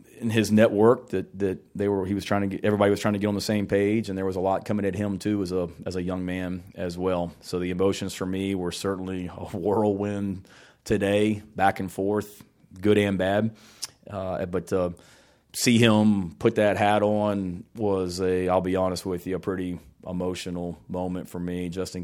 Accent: American